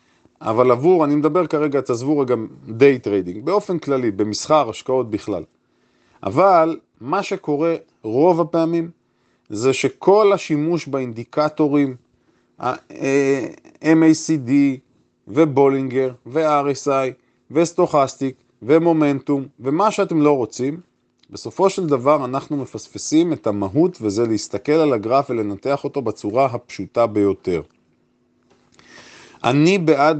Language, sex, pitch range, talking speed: Hebrew, male, 120-160 Hz, 100 wpm